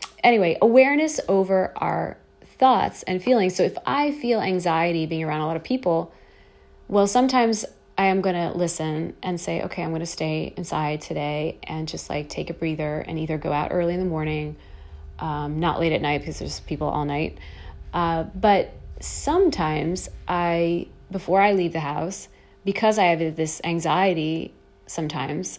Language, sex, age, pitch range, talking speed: English, female, 30-49, 155-190 Hz, 170 wpm